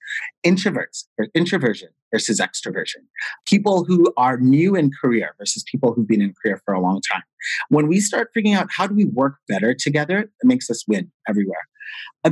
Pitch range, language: 130-185 Hz, English